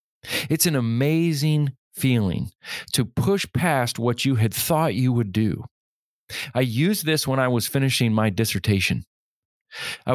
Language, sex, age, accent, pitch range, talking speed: English, male, 40-59, American, 110-150 Hz, 140 wpm